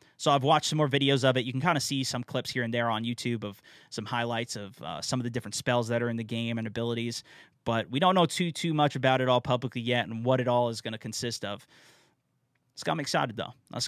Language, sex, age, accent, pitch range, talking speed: English, male, 20-39, American, 120-145 Hz, 270 wpm